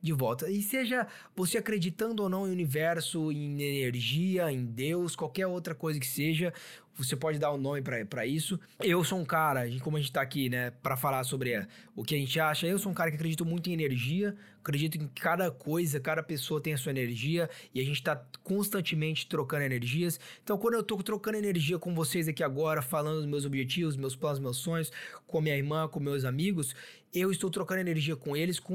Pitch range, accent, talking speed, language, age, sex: 150-195 Hz, Brazilian, 215 wpm, Portuguese, 20-39, male